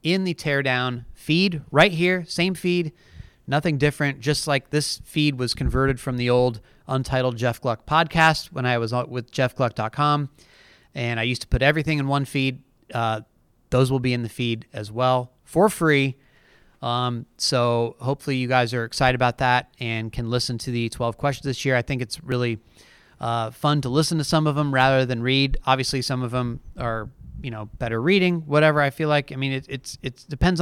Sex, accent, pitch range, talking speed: male, American, 120-140 Hz, 195 wpm